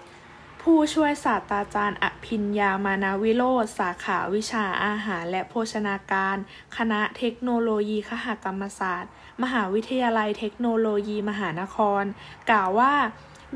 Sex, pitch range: female, 205-255 Hz